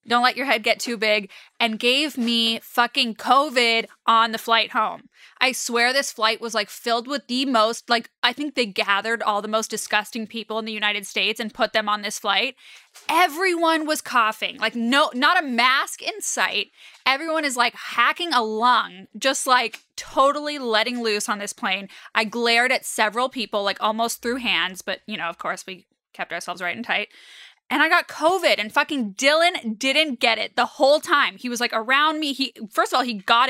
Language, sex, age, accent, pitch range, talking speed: English, female, 10-29, American, 220-270 Hz, 205 wpm